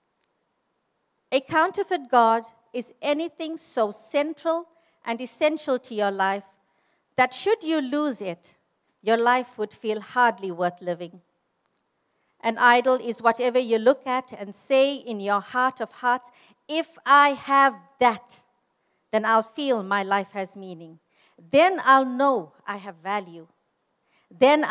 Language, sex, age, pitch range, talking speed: English, female, 50-69, 220-285 Hz, 135 wpm